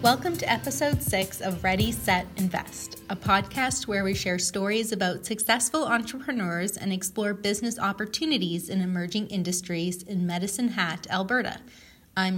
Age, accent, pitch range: 30-49, American, 185-235 Hz